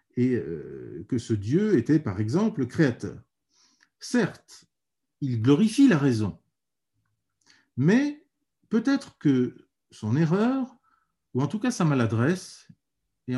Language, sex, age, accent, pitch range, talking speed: English, male, 50-69, French, 120-190 Hz, 115 wpm